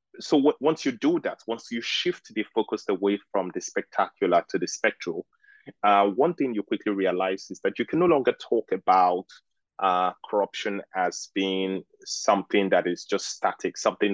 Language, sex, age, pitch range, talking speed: English, male, 20-39, 90-110 Hz, 180 wpm